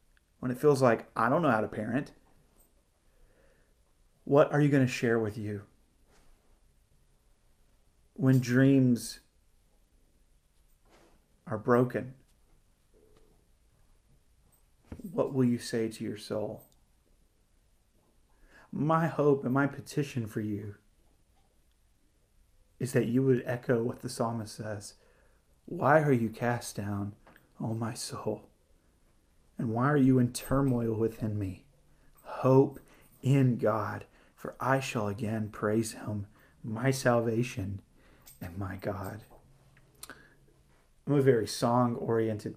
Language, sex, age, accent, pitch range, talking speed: English, male, 30-49, American, 105-125 Hz, 115 wpm